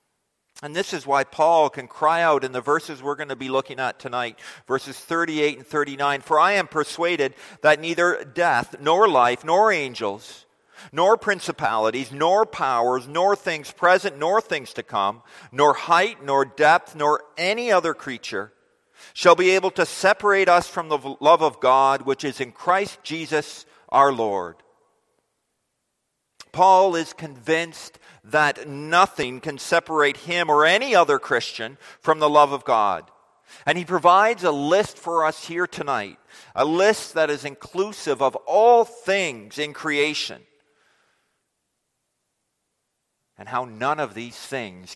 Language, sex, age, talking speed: English, male, 50-69, 150 wpm